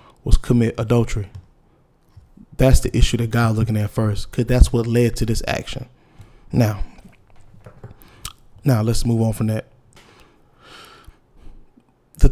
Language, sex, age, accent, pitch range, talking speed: English, male, 20-39, American, 115-125 Hz, 125 wpm